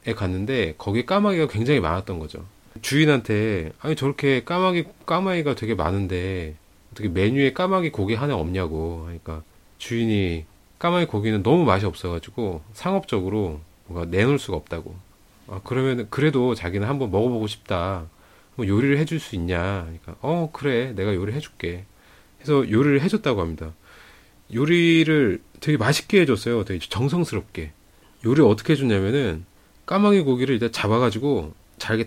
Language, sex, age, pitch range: Korean, male, 30-49, 95-140 Hz